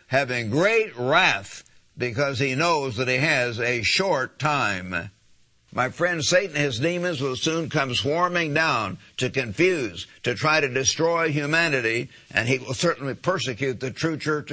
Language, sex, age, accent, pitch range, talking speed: English, male, 60-79, American, 130-165 Hz, 155 wpm